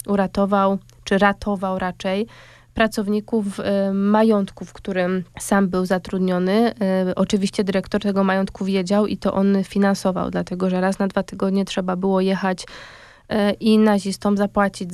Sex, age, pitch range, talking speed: female, 20-39, 190-205 Hz, 130 wpm